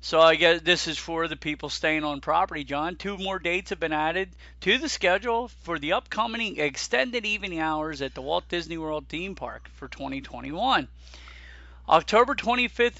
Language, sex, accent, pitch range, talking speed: English, male, American, 155-200 Hz, 175 wpm